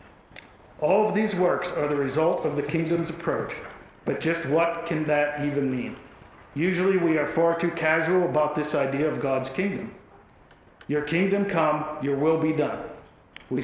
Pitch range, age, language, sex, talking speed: 140-165 Hz, 50-69, English, male, 165 wpm